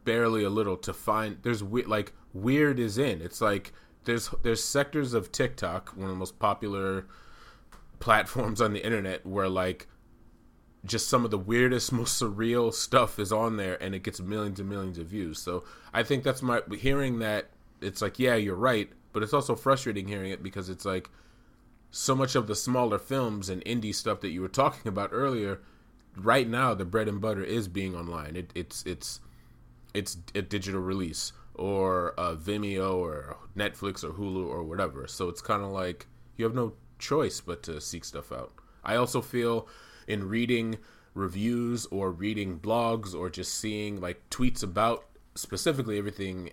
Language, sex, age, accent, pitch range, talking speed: English, male, 30-49, American, 95-115 Hz, 180 wpm